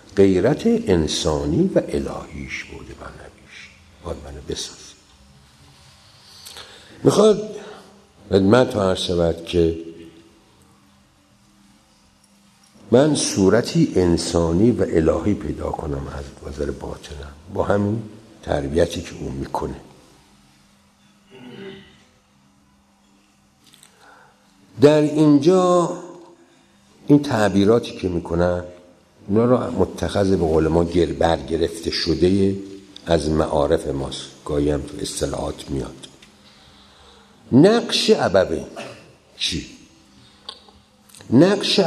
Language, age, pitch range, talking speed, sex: Persian, 60-79, 85-120 Hz, 80 wpm, male